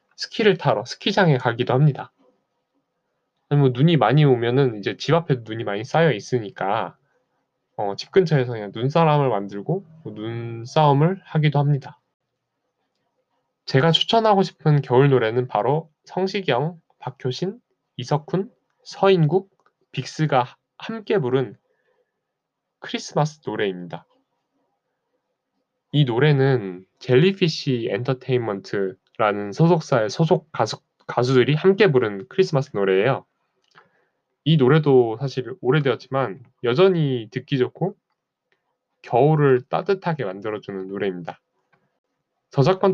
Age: 20-39